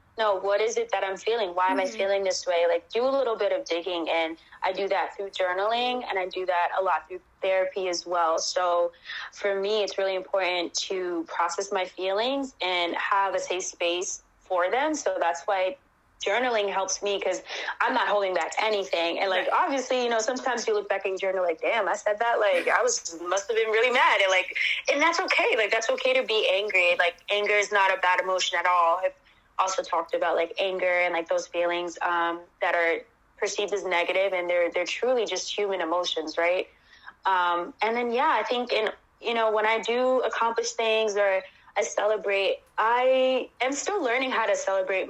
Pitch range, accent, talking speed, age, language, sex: 180-220 Hz, American, 210 wpm, 20-39, English, female